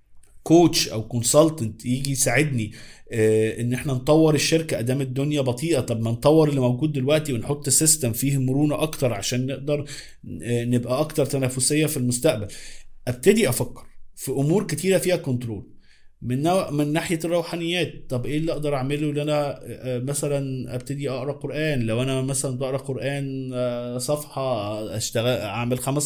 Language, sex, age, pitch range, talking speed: Arabic, male, 20-39, 125-155 Hz, 140 wpm